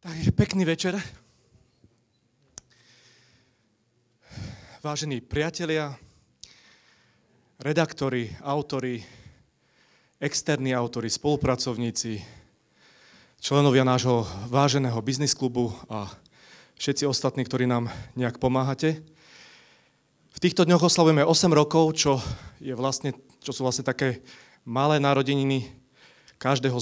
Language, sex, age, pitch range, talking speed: Slovak, male, 30-49, 120-150 Hz, 85 wpm